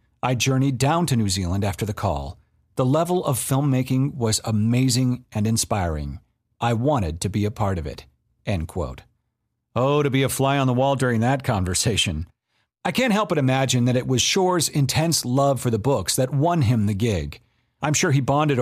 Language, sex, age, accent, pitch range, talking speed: English, male, 40-59, American, 110-150 Hz, 195 wpm